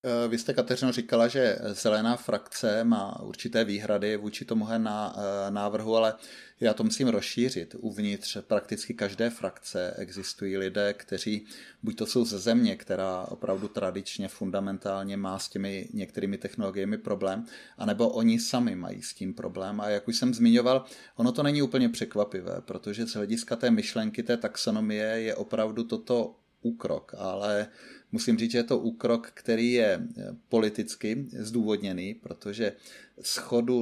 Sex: male